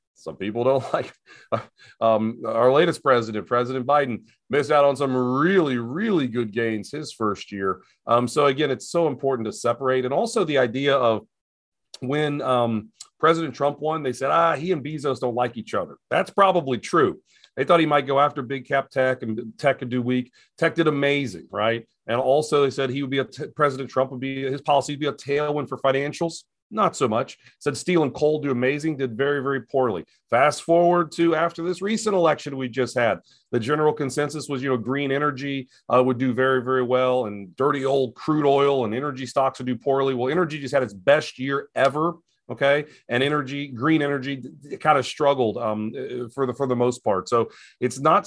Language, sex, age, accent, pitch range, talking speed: English, male, 40-59, American, 120-145 Hz, 205 wpm